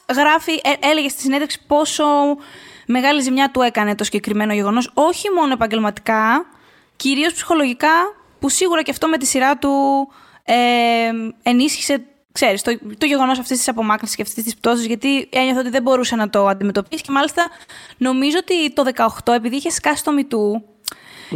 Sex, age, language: female, 20-39, Greek